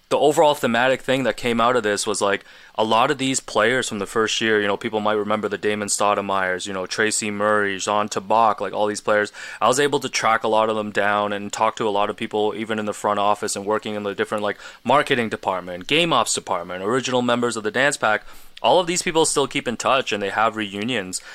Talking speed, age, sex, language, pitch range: 250 wpm, 20-39, male, English, 100-115 Hz